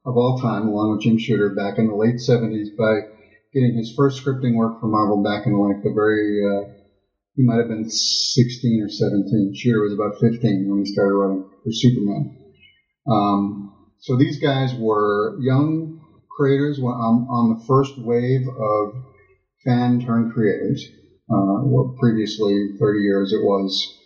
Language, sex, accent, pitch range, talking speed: English, male, American, 100-125 Hz, 160 wpm